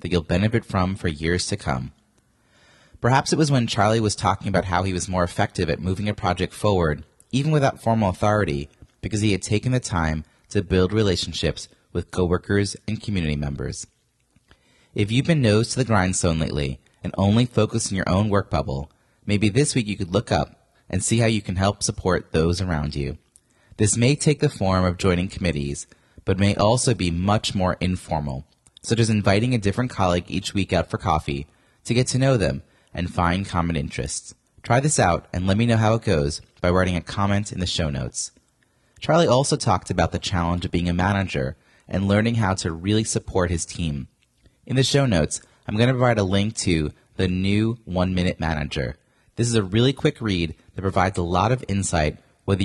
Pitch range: 85-110 Hz